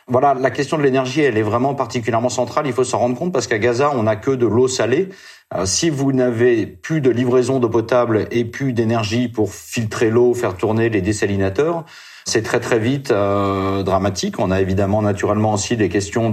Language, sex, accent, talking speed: French, male, French, 205 wpm